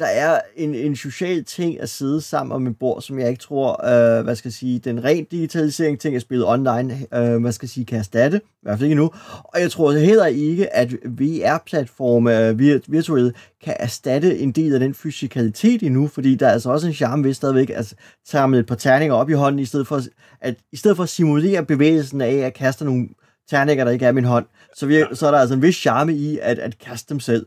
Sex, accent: male, native